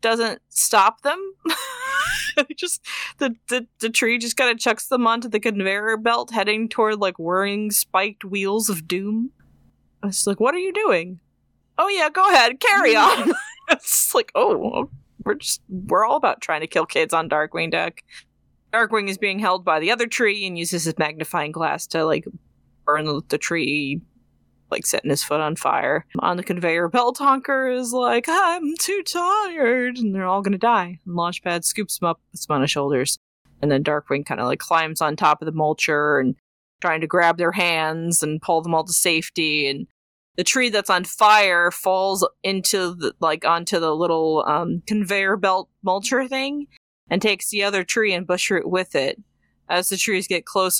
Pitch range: 165-230 Hz